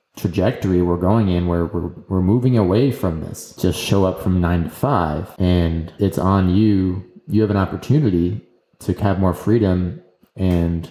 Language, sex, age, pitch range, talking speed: English, male, 20-39, 90-110 Hz, 170 wpm